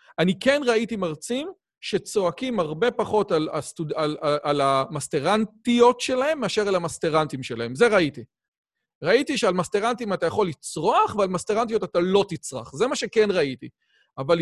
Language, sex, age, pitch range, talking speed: Hebrew, male, 40-59, 155-230 Hz, 150 wpm